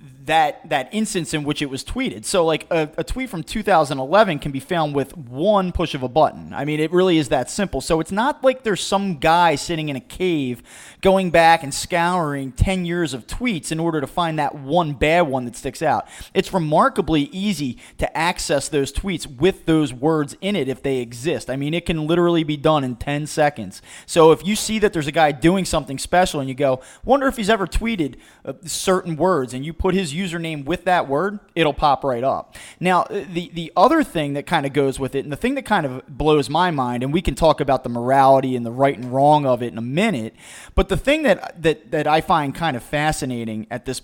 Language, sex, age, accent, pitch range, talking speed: English, male, 30-49, American, 140-185 Hz, 230 wpm